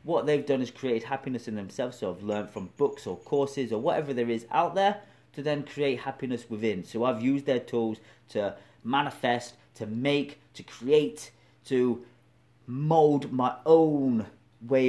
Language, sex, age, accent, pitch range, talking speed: English, male, 30-49, British, 105-140 Hz, 170 wpm